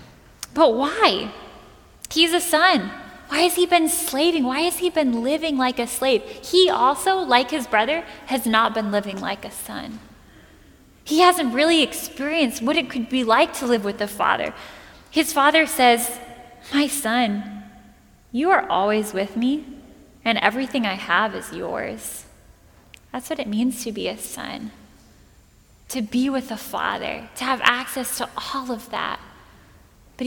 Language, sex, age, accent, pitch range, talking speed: English, female, 10-29, American, 230-300 Hz, 160 wpm